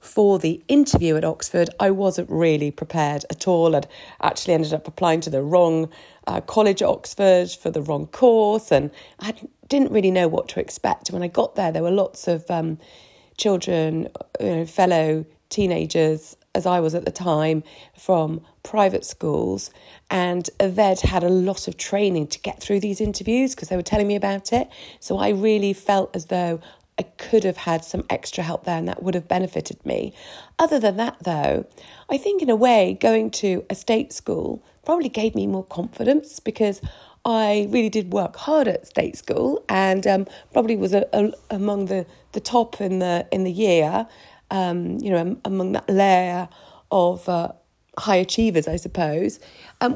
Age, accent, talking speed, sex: 40-59, British, 180 wpm, female